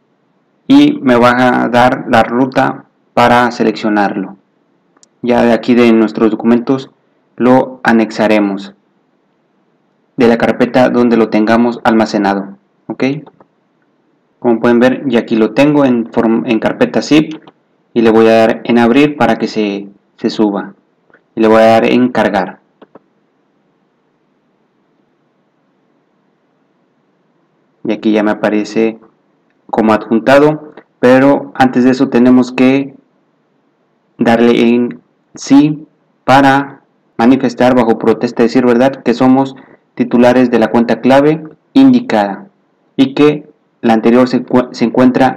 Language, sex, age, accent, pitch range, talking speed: Spanish, male, 30-49, Mexican, 115-135 Hz, 125 wpm